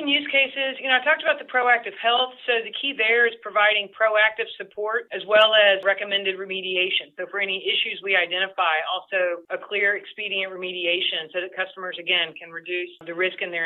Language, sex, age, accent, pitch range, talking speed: English, female, 40-59, American, 180-210 Hz, 195 wpm